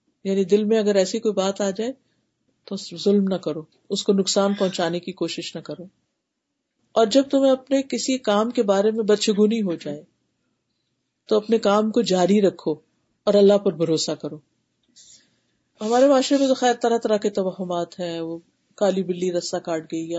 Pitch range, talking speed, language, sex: 175-235 Hz, 180 wpm, Urdu, female